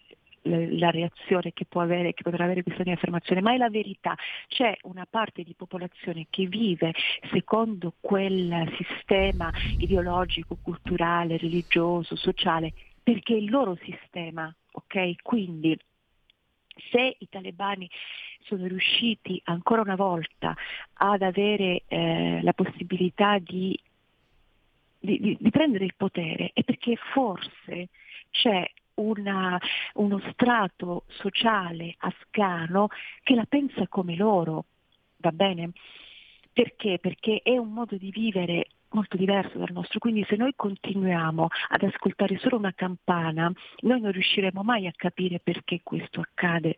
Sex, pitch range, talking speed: female, 175-210 Hz, 130 wpm